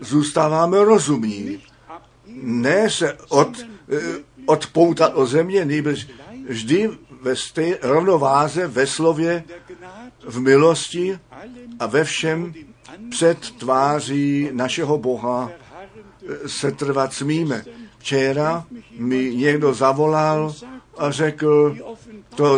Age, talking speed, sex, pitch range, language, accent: 60-79, 85 wpm, male, 135-170 Hz, Czech, native